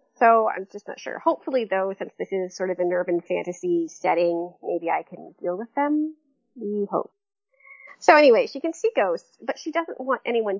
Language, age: English, 30-49